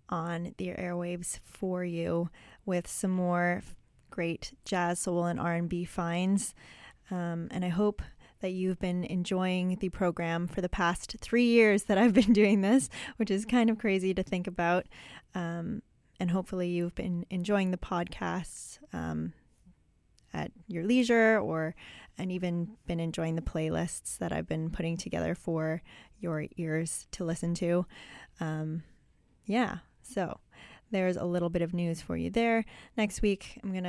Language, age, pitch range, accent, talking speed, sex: English, 10-29, 175-205 Hz, American, 155 wpm, female